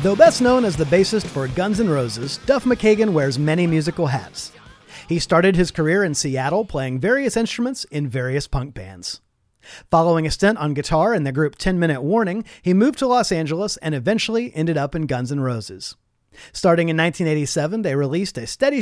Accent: American